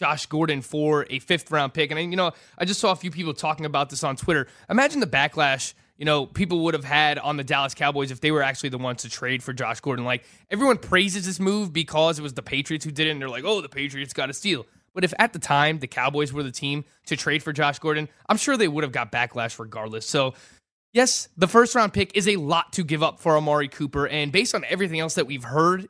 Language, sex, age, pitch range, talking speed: English, male, 20-39, 140-180 Hz, 255 wpm